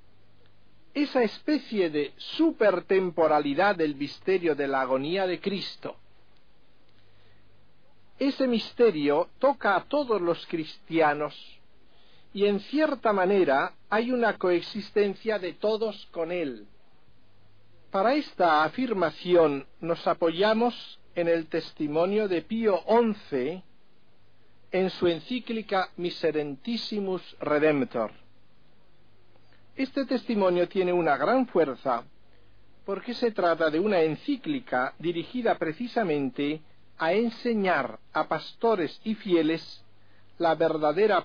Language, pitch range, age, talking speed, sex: Spanish, 145-210 Hz, 50-69, 95 wpm, male